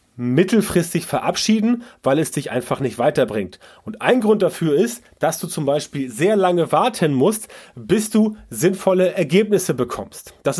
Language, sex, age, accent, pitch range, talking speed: German, male, 30-49, German, 145-195 Hz, 155 wpm